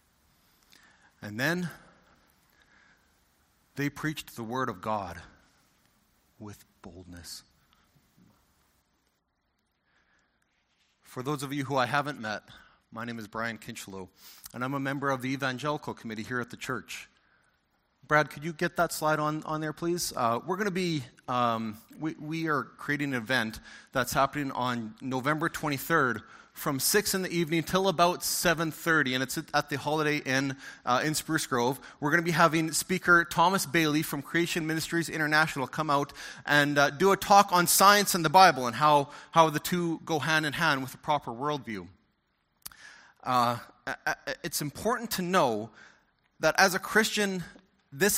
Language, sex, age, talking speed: English, male, 40-59, 155 wpm